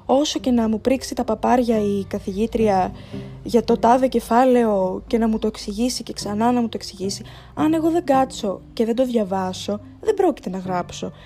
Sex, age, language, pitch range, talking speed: female, 20-39, Greek, 195-275 Hz, 195 wpm